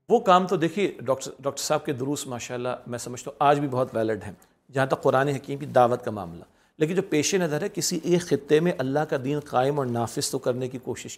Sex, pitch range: male, 125-155 Hz